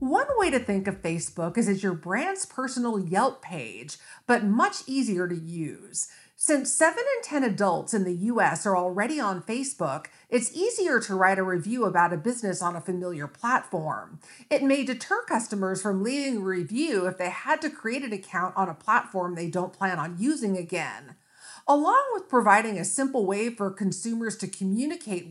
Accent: American